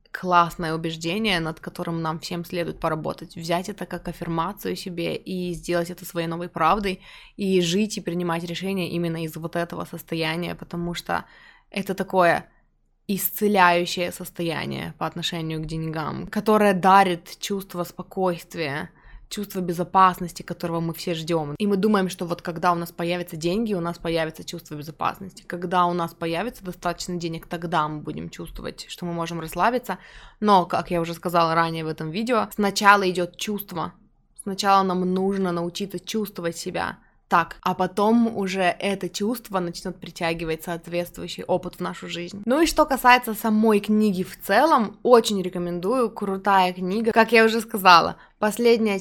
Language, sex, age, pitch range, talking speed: Russian, female, 20-39, 170-200 Hz, 155 wpm